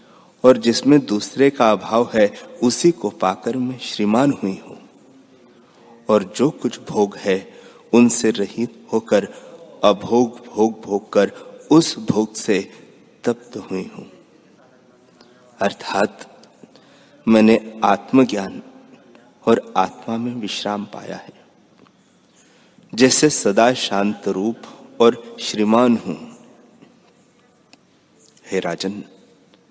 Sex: male